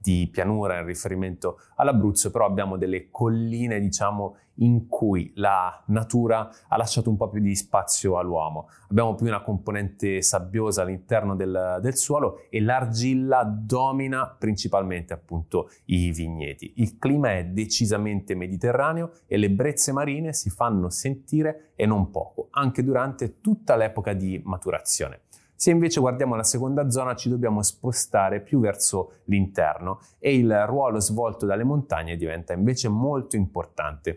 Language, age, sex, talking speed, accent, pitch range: Italian, 30-49, male, 140 wpm, native, 95-120 Hz